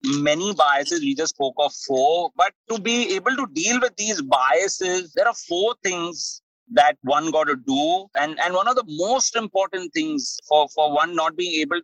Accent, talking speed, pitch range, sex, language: Indian, 200 wpm, 170-265 Hz, male, English